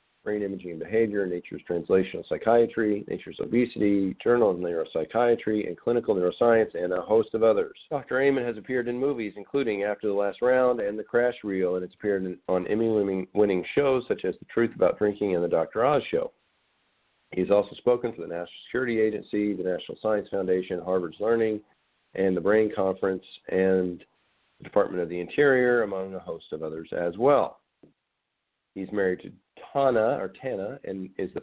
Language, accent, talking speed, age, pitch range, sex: English, American, 175 wpm, 40-59, 95-115 Hz, male